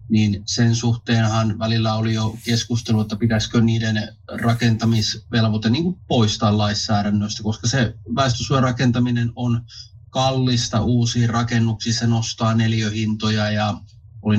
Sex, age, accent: male, 30-49, native